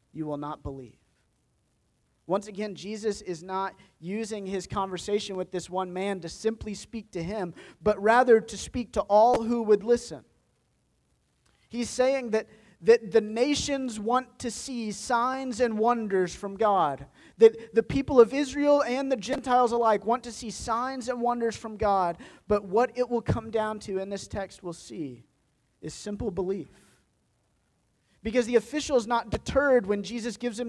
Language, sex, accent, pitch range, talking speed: English, male, American, 180-240 Hz, 170 wpm